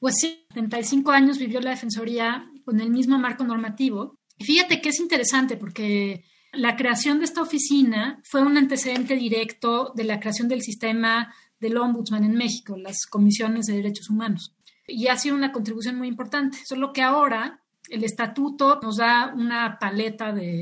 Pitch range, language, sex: 215-255 Hz, Spanish, female